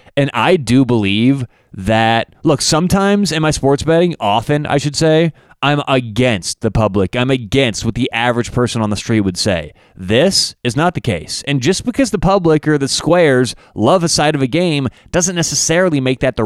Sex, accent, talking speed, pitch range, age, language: male, American, 195 wpm, 110-140 Hz, 30-49, English